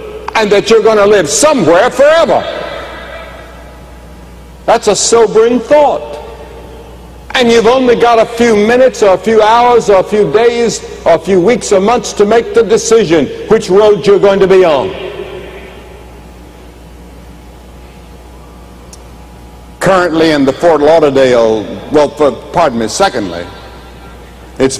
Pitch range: 130-215 Hz